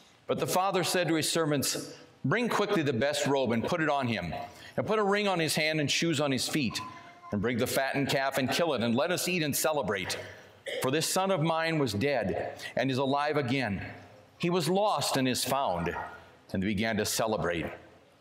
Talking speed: 215 wpm